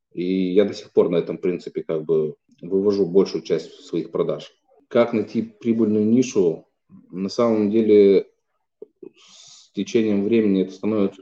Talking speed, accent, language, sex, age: 145 wpm, native, Russian, male, 30-49